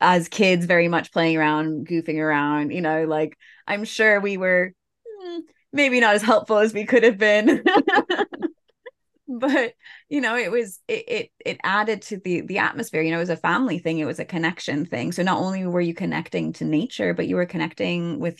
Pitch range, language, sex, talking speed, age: 150-180 Hz, English, female, 200 wpm, 20-39